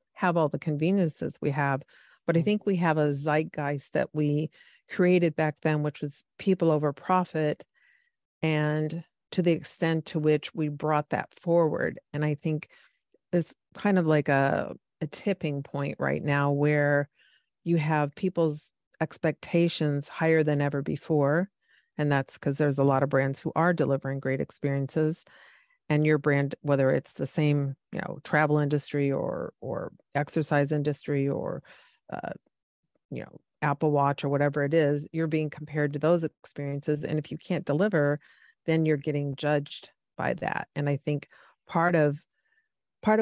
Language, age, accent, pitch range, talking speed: English, 40-59, American, 145-170 Hz, 160 wpm